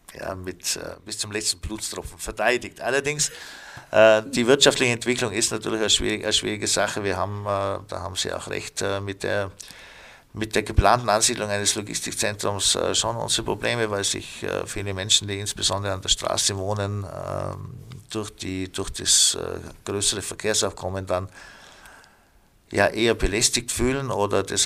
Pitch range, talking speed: 100-110 Hz, 160 wpm